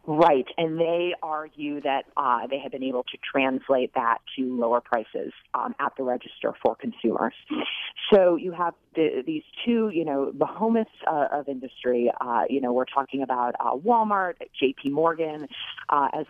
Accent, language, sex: American, English, female